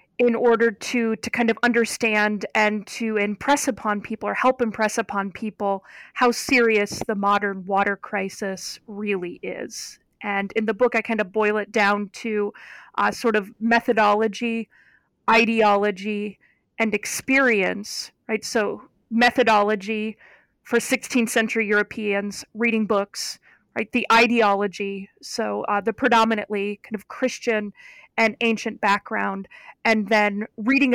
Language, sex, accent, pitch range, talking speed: English, female, American, 205-230 Hz, 130 wpm